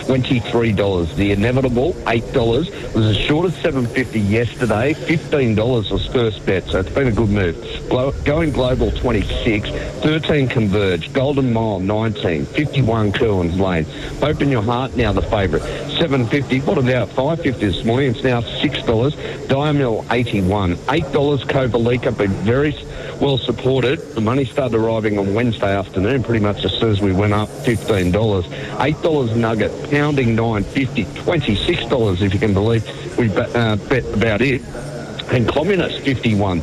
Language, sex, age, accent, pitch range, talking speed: English, male, 50-69, Australian, 105-140 Hz, 150 wpm